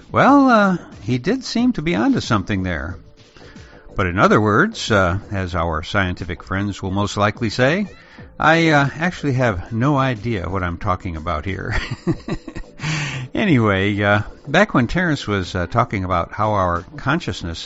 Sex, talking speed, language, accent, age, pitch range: male, 155 wpm, English, American, 60-79, 95-130 Hz